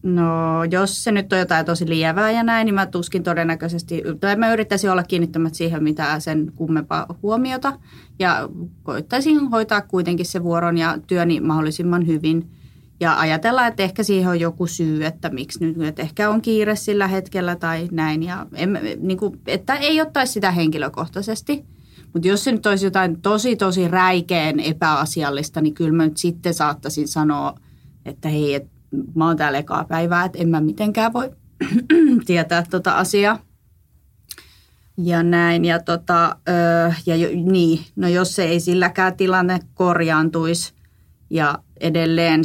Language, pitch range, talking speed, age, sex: Finnish, 155-190 Hz, 160 wpm, 30-49, female